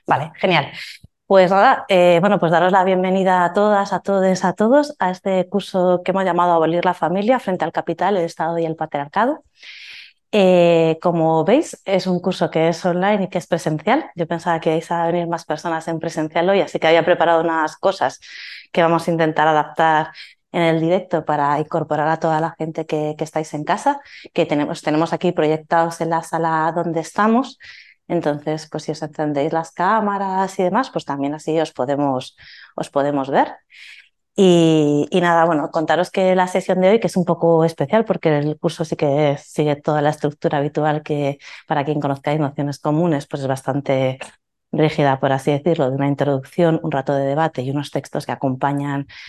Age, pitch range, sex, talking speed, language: 20-39, 150-180 Hz, female, 195 wpm, Spanish